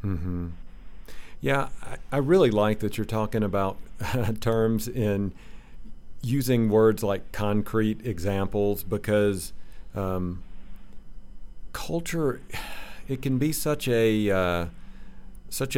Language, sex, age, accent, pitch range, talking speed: English, male, 50-69, American, 90-110 Hz, 105 wpm